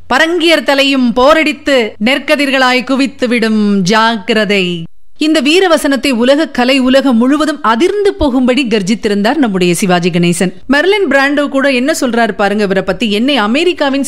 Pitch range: 210-280 Hz